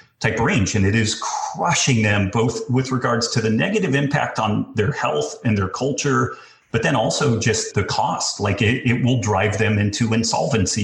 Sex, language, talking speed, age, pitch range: male, English, 190 wpm, 40-59, 105-120 Hz